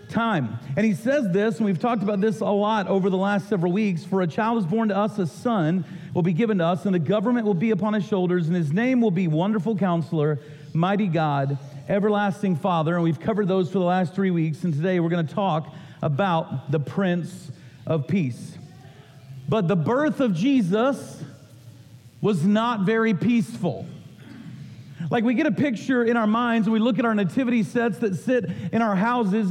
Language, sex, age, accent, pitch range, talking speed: English, male, 40-59, American, 170-230 Hz, 200 wpm